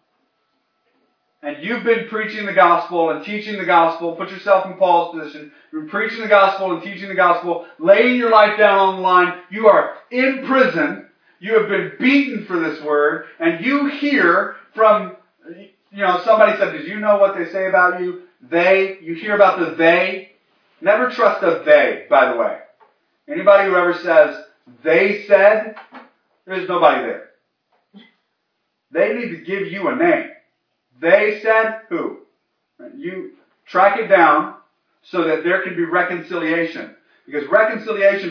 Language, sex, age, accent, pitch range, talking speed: English, male, 30-49, American, 175-265 Hz, 160 wpm